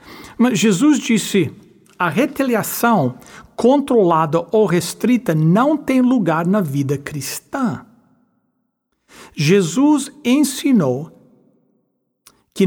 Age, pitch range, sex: 60-79, 150-235 Hz, male